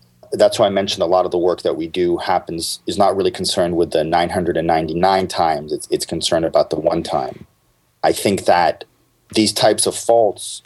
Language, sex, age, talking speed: English, male, 40-59, 195 wpm